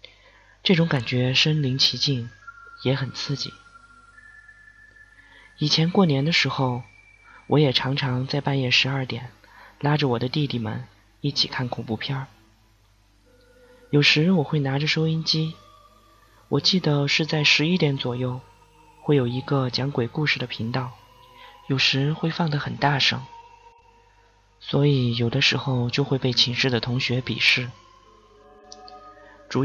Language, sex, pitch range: Chinese, male, 125-195 Hz